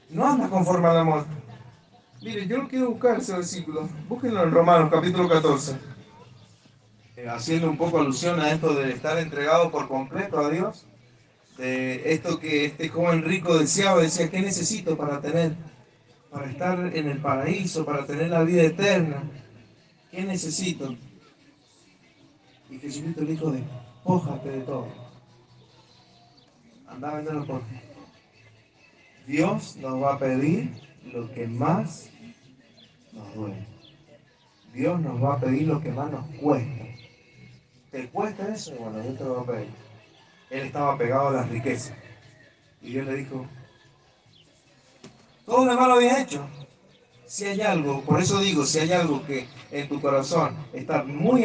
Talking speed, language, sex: 150 wpm, Spanish, male